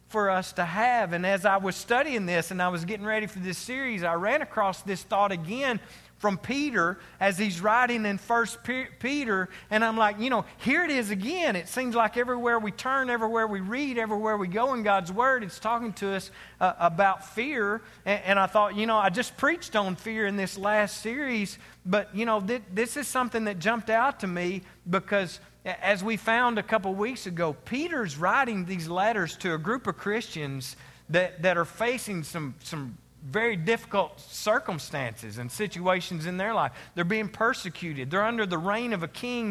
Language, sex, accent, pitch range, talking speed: English, male, American, 180-230 Hz, 200 wpm